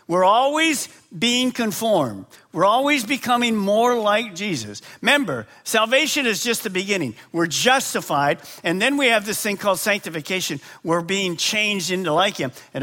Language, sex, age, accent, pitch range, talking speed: English, male, 50-69, American, 155-235 Hz, 155 wpm